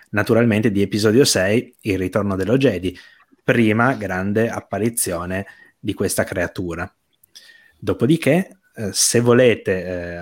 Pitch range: 95-120 Hz